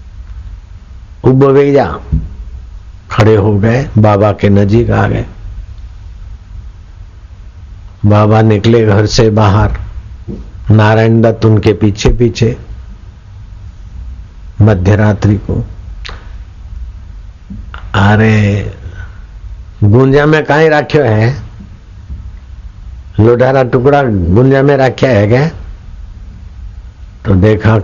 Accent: native